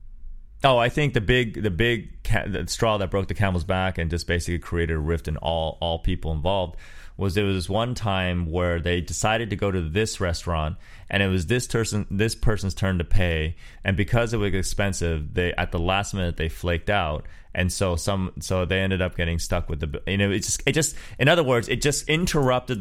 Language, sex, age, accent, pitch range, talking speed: English, male, 30-49, American, 85-115 Hz, 225 wpm